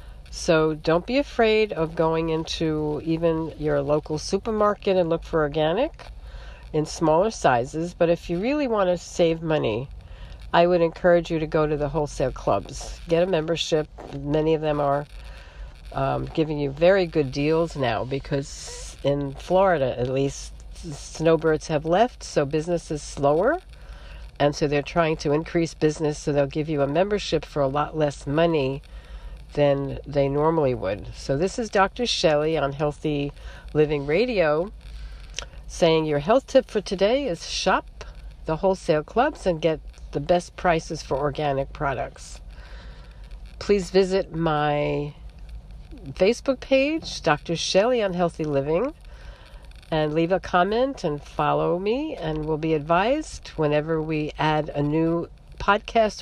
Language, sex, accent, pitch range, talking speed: English, female, American, 140-175 Hz, 150 wpm